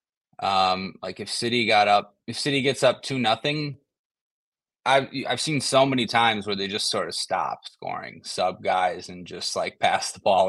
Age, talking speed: 20-39, 195 wpm